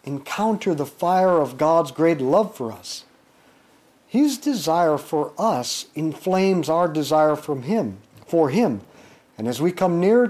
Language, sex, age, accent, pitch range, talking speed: English, male, 50-69, American, 155-215 Hz, 145 wpm